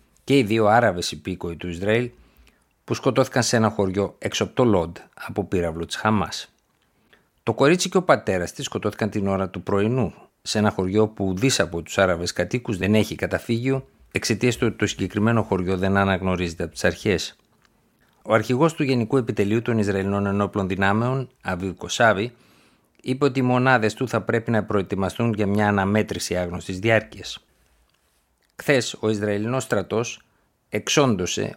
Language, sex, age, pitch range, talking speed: Greek, male, 50-69, 95-120 Hz, 160 wpm